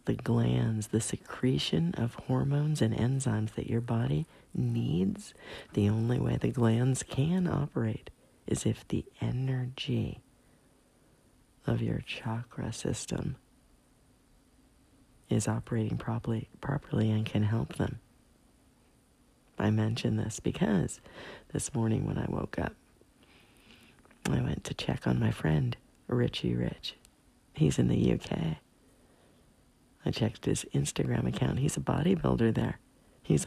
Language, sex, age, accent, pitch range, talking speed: English, female, 50-69, American, 100-130 Hz, 120 wpm